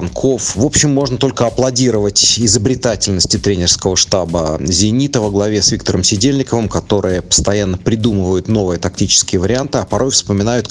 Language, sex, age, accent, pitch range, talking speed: Russian, male, 30-49, native, 100-130 Hz, 130 wpm